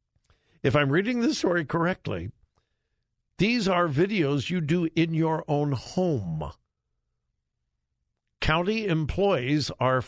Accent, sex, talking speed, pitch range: American, male, 105 wpm, 140-205 Hz